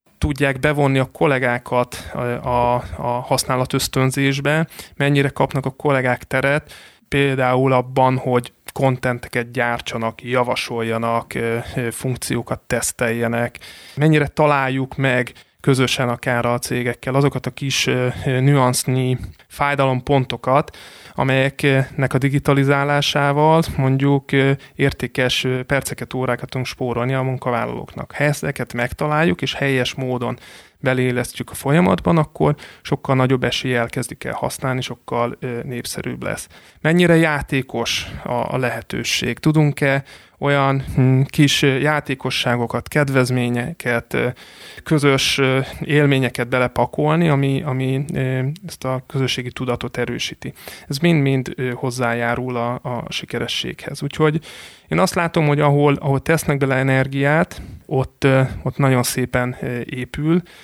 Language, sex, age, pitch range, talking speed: Hungarian, male, 30-49, 125-140 Hz, 100 wpm